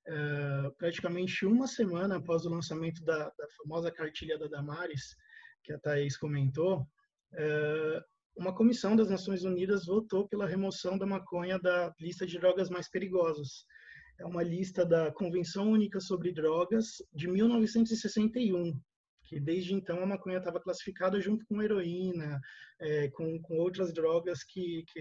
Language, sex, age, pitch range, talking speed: Portuguese, male, 20-39, 155-195 Hz, 145 wpm